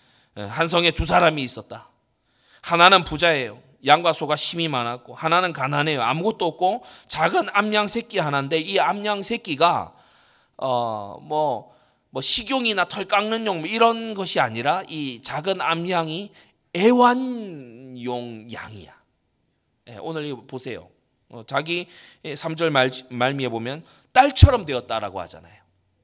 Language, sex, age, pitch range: Korean, male, 30-49, 135-205 Hz